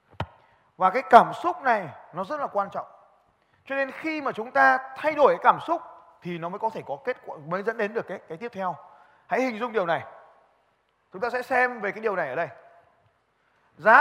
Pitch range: 210-305 Hz